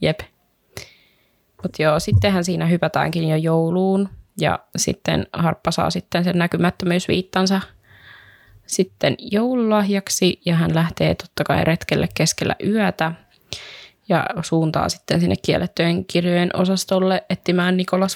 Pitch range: 155-185 Hz